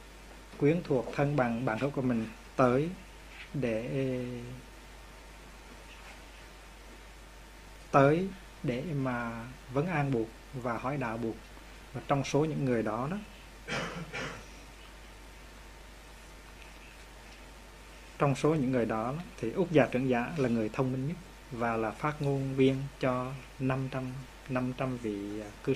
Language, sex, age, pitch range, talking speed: Vietnamese, male, 20-39, 125-150 Hz, 120 wpm